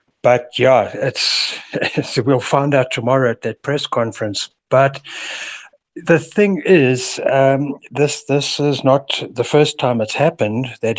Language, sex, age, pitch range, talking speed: English, male, 60-79, 115-140 Hz, 145 wpm